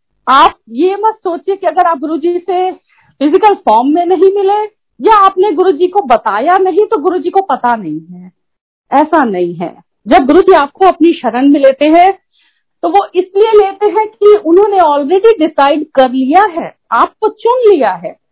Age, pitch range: 50-69, 225-360 Hz